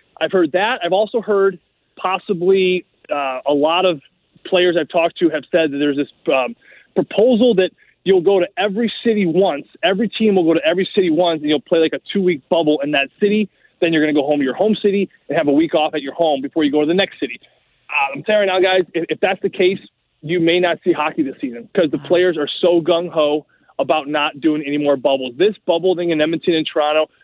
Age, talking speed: 20-39, 240 wpm